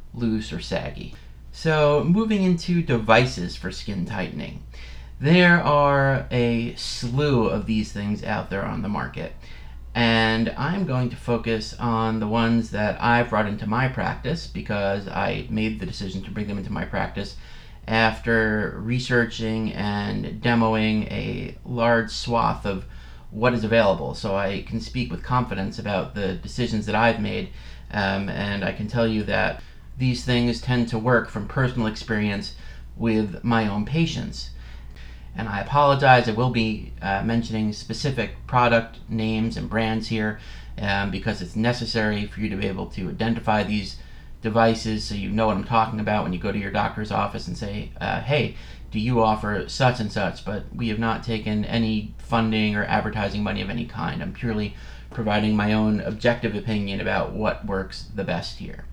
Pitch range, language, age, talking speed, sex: 100-115 Hz, English, 30-49, 170 wpm, male